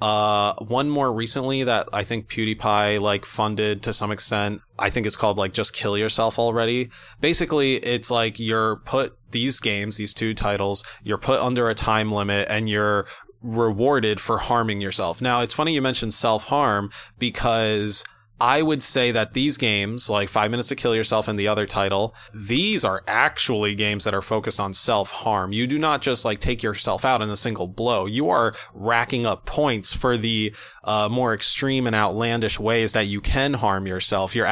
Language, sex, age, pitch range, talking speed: English, male, 20-39, 105-120 Hz, 190 wpm